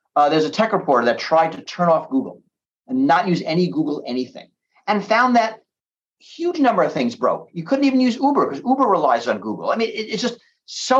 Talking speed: 225 wpm